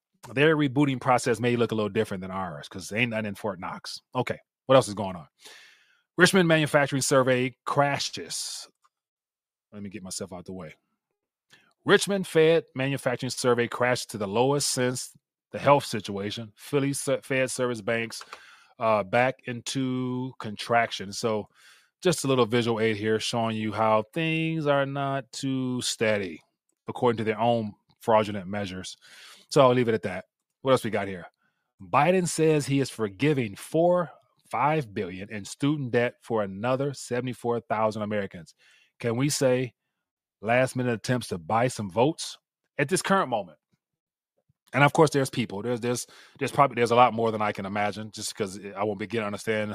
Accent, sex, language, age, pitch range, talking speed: American, male, English, 30-49, 110-140 Hz, 165 wpm